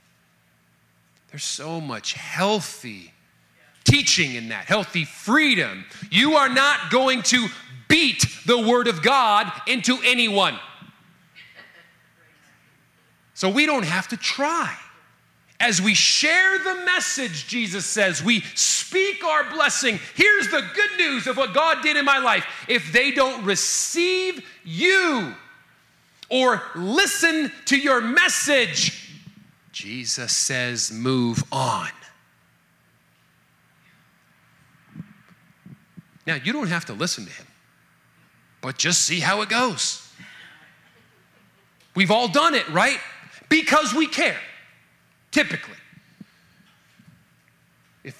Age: 30-49